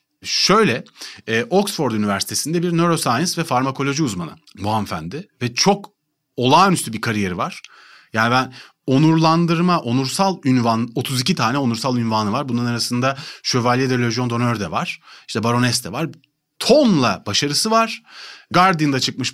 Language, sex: Turkish, male